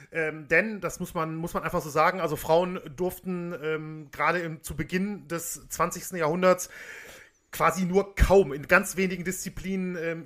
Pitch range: 150-180 Hz